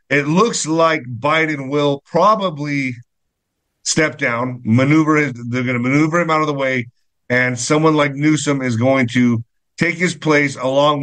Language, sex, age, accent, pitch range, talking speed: English, male, 50-69, American, 125-155 Hz, 160 wpm